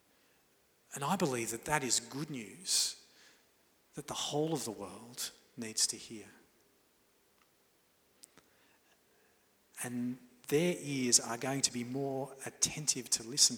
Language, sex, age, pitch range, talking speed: English, male, 40-59, 120-150 Hz, 125 wpm